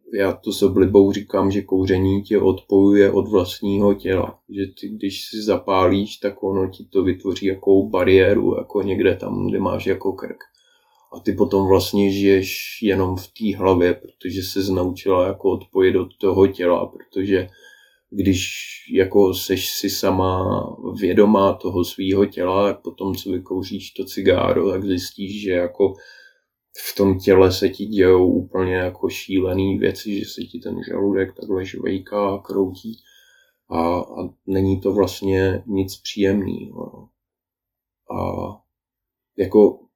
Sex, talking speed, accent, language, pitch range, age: male, 145 wpm, native, Czech, 95-100 Hz, 20-39